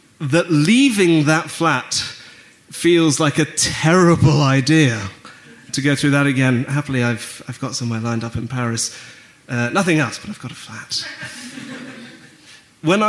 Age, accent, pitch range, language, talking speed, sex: 30-49, British, 130-170 Hz, English, 145 wpm, male